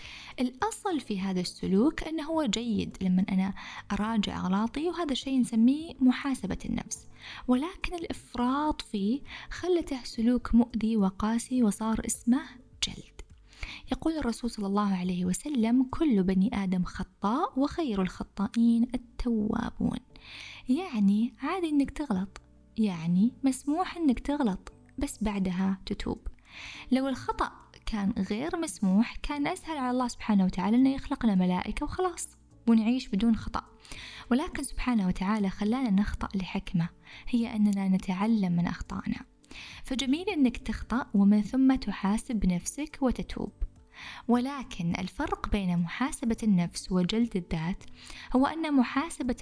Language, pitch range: Arabic, 200-275 Hz